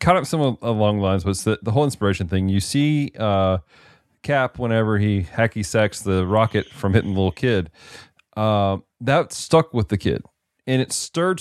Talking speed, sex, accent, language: 200 wpm, male, American, English